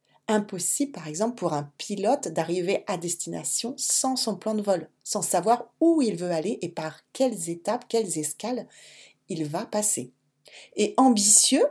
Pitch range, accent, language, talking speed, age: 170-235 Hz, French, French, 160 wpm, 40-59